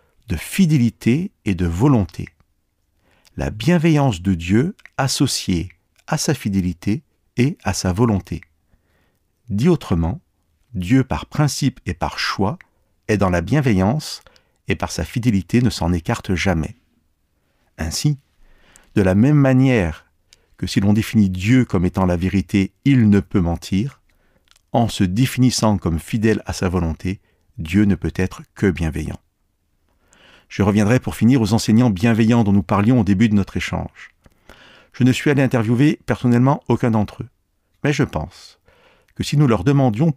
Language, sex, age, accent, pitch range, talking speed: French, male, 50-69, French, 90-125 Hz, 150 wpm